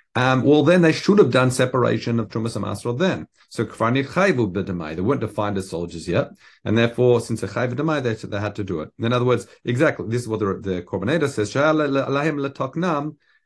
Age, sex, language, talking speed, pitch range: 50-69, male, English, 180 wpm, 100-135 Hz